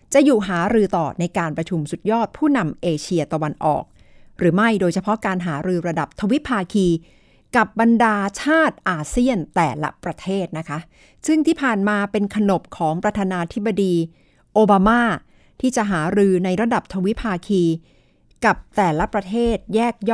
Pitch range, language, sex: 165-215 Hz, Thai, female